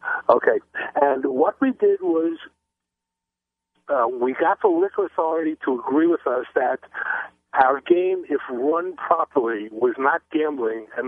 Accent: American